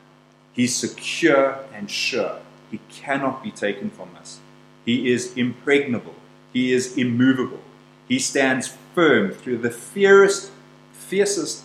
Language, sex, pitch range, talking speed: English, male, 115-165 Hz, 120 wpm